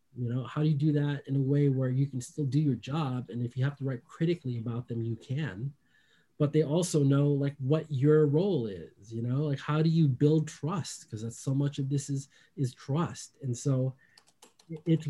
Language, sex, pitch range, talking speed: English, male, 120-150 Hz, 225 wpm